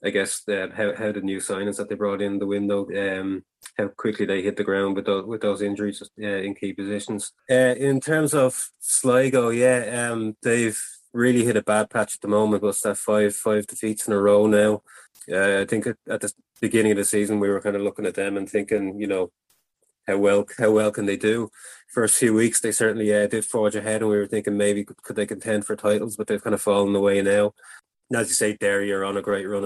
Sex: male